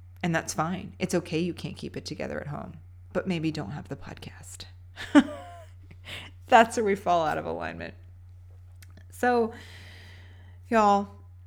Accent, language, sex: American, English, female